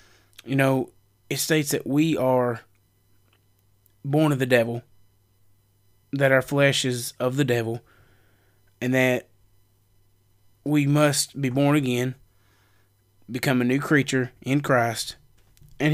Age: 20-39